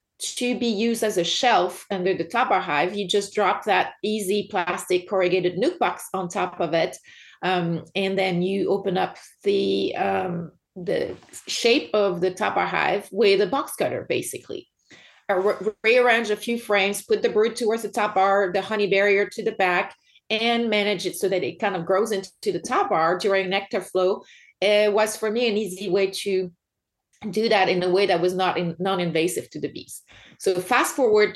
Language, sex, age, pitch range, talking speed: English, female, 30-49, 185-225 Hz, 195 wpm